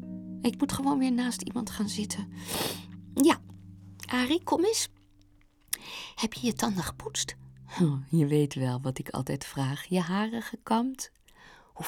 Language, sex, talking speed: Dutch, female, 145 wpm